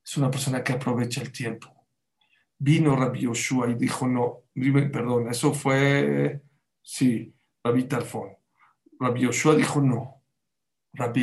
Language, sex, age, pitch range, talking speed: English, male, 50-69, 120-140 Hz, 130 wpm